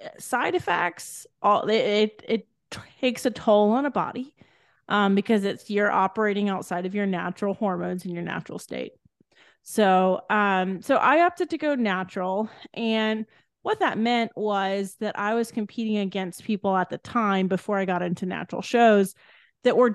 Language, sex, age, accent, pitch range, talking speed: English, female, 30-49, American, 195-225 Hz, 170 wpm